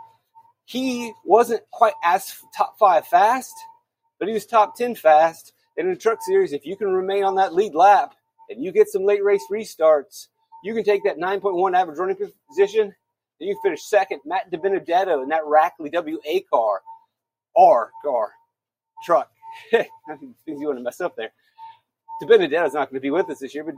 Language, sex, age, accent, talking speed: English, male, 30-49, American, 175 wpm